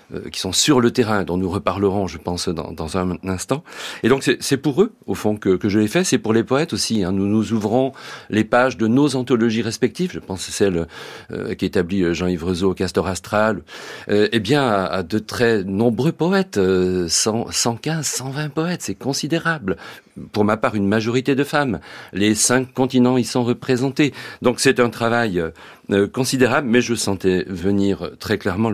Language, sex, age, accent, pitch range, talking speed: French, male, 40-59, French, 95-125 Hz, 195 wpm